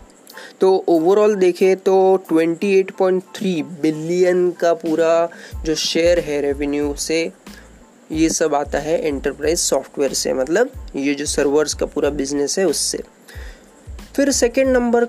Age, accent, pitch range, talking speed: 20-39, native, 160-215 Hz, 125 wpm